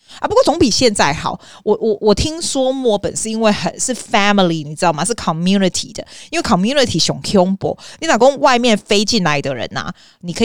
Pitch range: 170-220 Hz